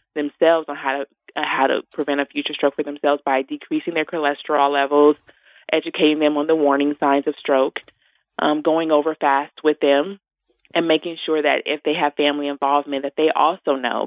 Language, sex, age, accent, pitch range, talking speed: English, female, 20-39, American, 140-155 Hz, 190 wpm